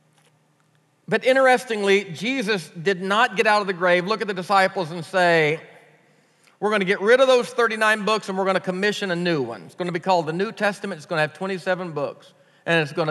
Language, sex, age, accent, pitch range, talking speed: English, male, 40-59, American, 165-220 Hz, 230 wpm